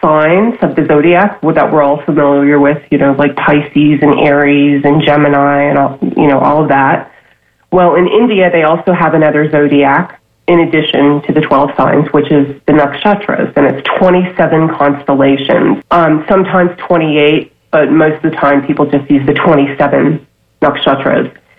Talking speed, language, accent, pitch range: 160 wpm, English, American, 145-175 Hz